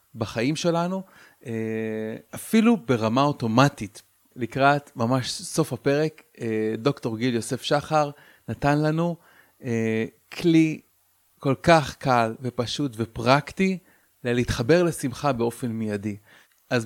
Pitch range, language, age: 115-150 Hz, Hebrew, 30-49